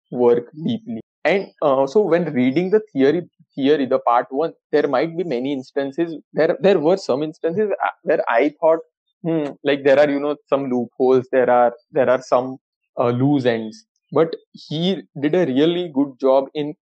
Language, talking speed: English, 180 wpm